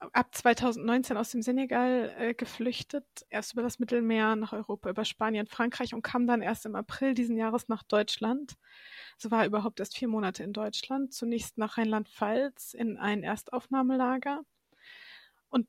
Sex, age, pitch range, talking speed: female, 20-39, 220-250 Hz, 160 wpm